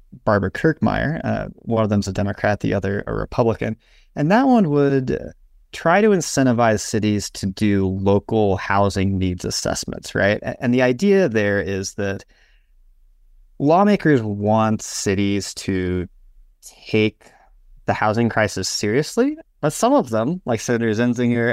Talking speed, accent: 135 wpm, American